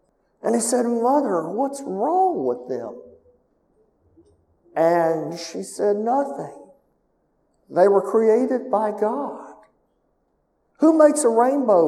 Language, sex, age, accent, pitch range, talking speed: English, male, 50-69, American, 180-245 Hz, 105 wpm